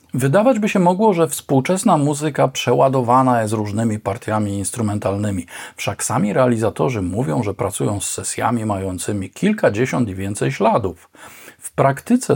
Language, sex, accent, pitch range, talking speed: Polish, male, native, 110-170 Hz, 130 wpm